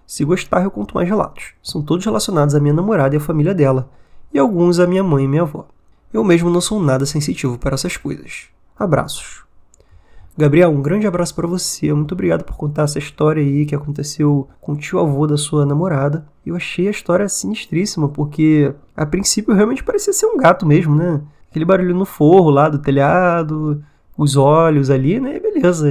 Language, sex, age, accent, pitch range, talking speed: Portuguese, male, 20-39, Brazilian, 145-180 Hz, 190 wpm